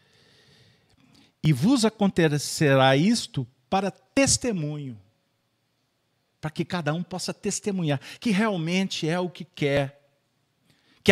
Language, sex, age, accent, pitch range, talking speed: Portuguese, male, 50-69, Brazilian, 135-200 Hz, 105 wpm